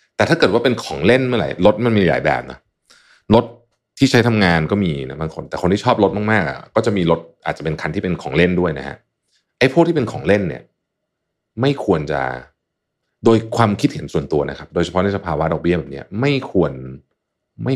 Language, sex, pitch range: Thai, male, 80-115 Hz